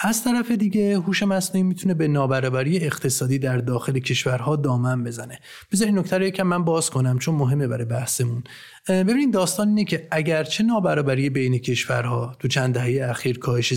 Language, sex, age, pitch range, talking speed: Persian, male, 30-49, 130-180 Hz, 165 wpm